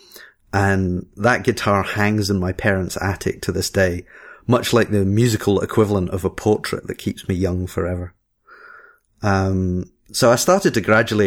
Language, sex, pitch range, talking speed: English, male, 90-105 Hz, 160 wpm